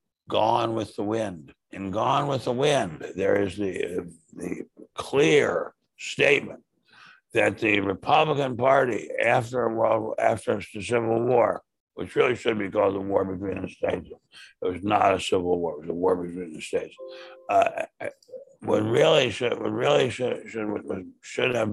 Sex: male